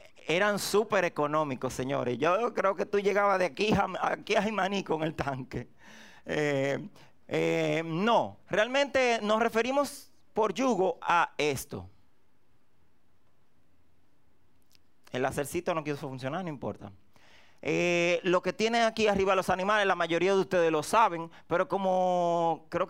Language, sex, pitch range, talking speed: Spanish, male, 160-210 Hz, 135 wpm